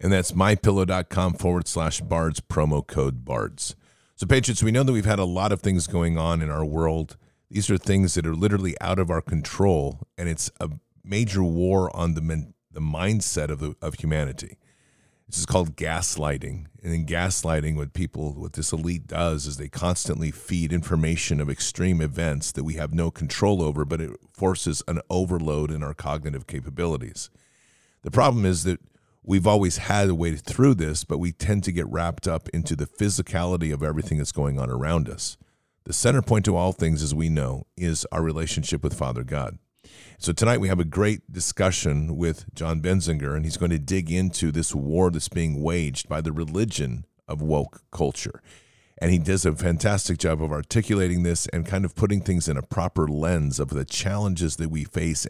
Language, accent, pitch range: English, American, 75-95 Hz